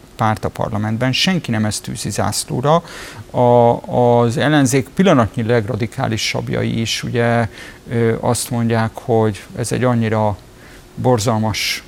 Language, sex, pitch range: Hungarian, male, 115-130 Hz